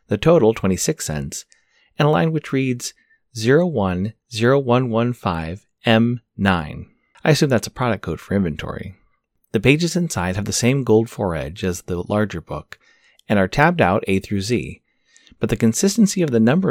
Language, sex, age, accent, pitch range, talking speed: English, male, 30-49, American, 95-130 Hz, 160 wpm